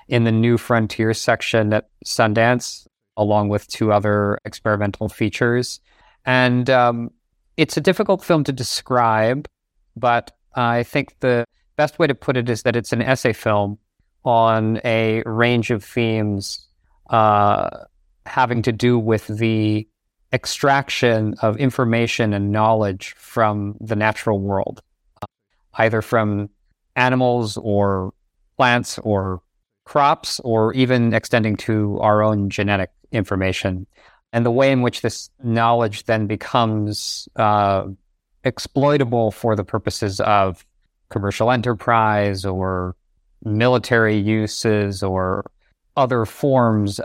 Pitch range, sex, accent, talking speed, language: 100-120 Hz, male, American, 120 wpm, English